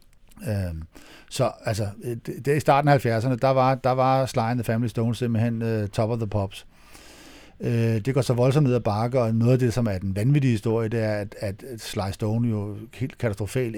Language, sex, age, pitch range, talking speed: Danish, male, 60-79, 105-130 Hz, 205 wpm